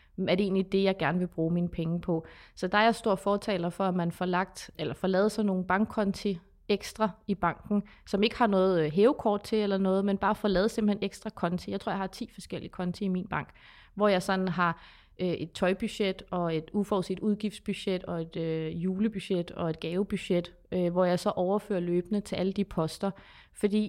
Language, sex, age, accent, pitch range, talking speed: Danish, female, 30-49, native, 180-205 Hz, 215 wpm